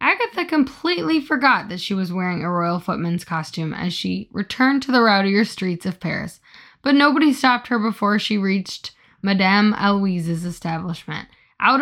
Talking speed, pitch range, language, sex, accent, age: 155 wpm, 180-255 Hz, English, female, American, 10-29